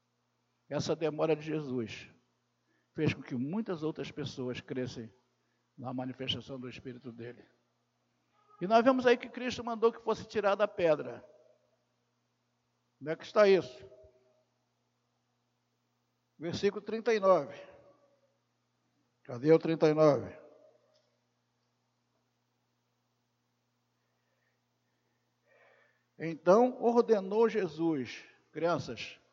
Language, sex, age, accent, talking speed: Portuguese, male, 60-79, Brazilian, 85 wpm